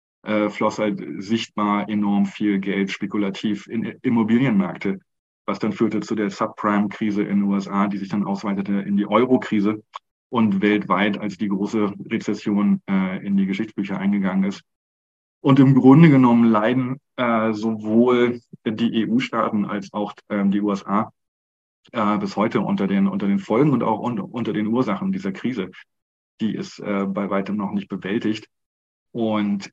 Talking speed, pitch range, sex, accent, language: 155 wpm, 100-115 Hz, male, German, German